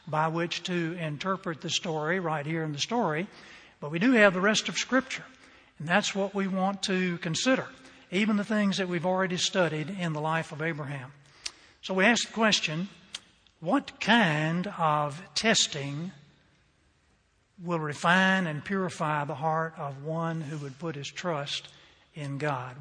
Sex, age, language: male, 60-79, English